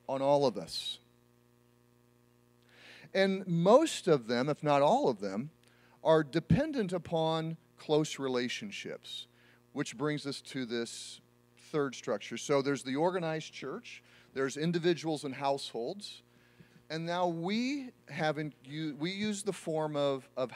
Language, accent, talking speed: English, American, 130 wpm